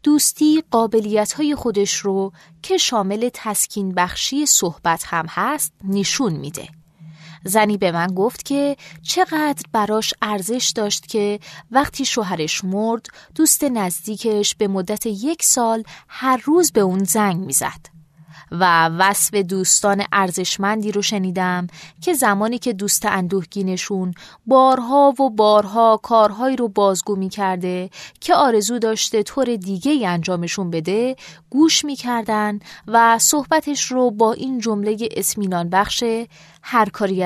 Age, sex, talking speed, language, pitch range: 20-39, female, 120 wpm, Persian, 185-240 Hz